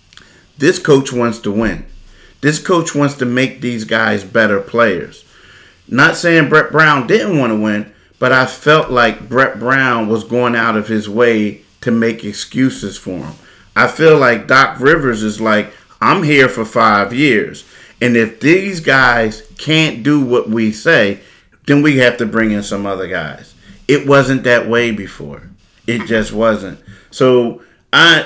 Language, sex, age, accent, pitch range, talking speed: English, male, 40-59, American, 110-145 Hz, 170 wpm